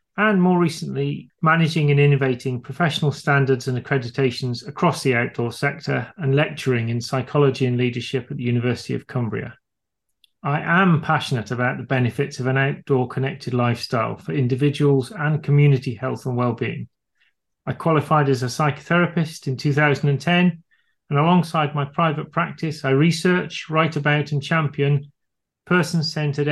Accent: British